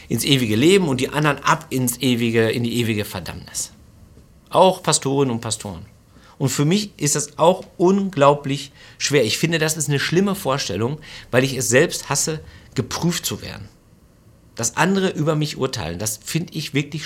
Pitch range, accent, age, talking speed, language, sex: 110-150 Hz, German, 50-69, 165 wpm, German, male